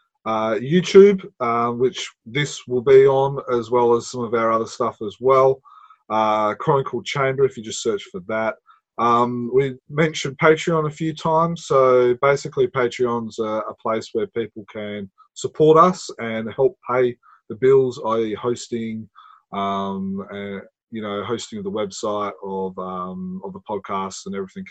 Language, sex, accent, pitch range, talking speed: English, male, Australian, 110-175 Hz, 160 wpm